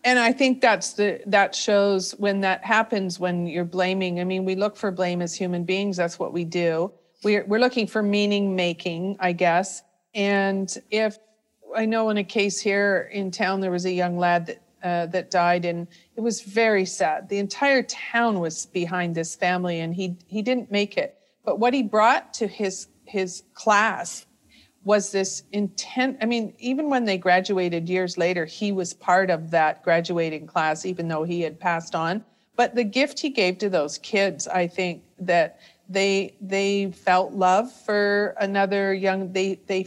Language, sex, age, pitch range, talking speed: English, female, 50-69, 180-215 Hz, 185 wpm